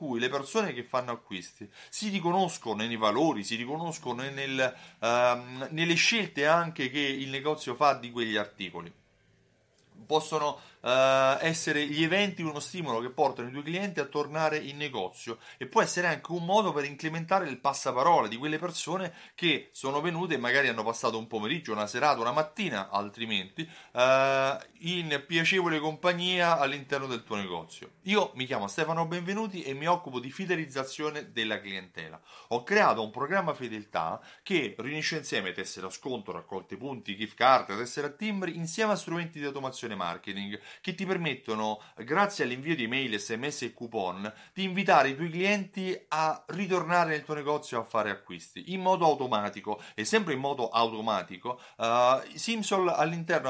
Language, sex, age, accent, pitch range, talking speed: Italian, male, 30-49, native, 115-170 Hz, 155 wpm